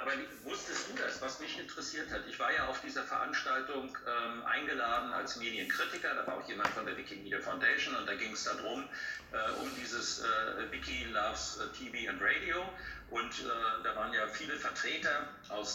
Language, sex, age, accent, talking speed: German, male, 50-69, German, 185 wpm